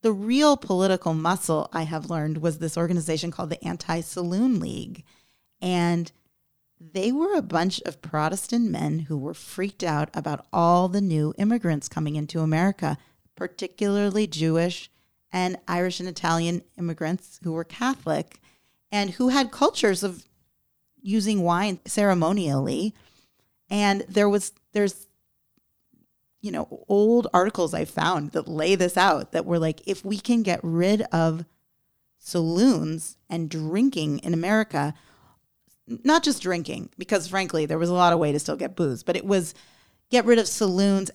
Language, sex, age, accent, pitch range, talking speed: English, female, 40-59, American, 160-205 Hz, 150 wpm